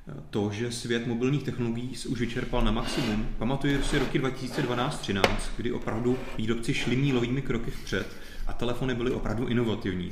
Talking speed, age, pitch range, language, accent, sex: 160 wpm, 30-49, 105-125 Hz, Czech, native, male